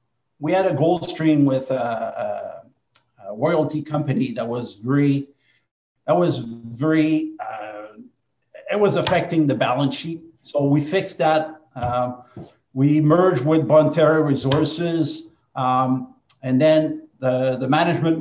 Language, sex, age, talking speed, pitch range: English, male, 50-69, 125 wpm, 130-155 Hz